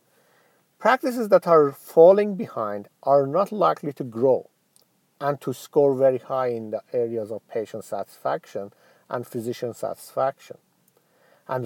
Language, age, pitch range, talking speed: English, 50-69, 130-170 Hz, 130 wpm